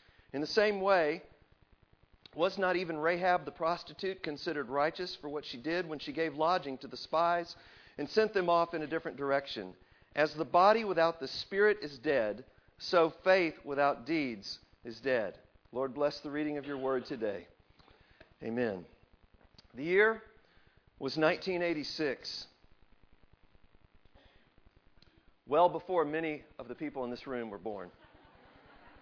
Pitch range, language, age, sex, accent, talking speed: 120-170 Hz, English, 50-69, male, American, 145 wpm